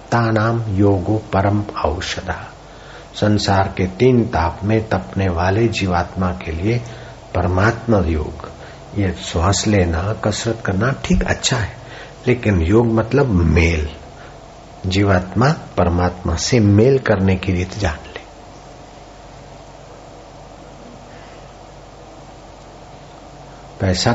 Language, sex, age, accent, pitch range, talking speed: Hindi, male, 60-79, native, 90-115 Hz, 95 wpm